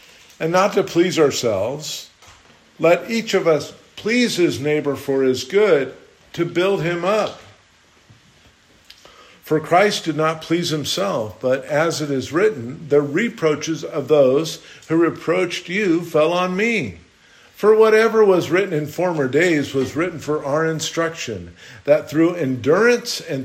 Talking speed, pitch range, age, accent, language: 145 wpm, 135-175 Hz, 50-69, American, English